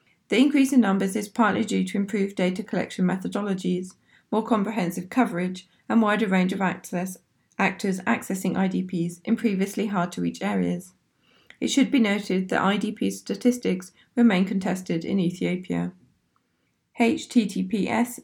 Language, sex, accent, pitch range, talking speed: English, female, British, 175-210 Hz, 130 wpm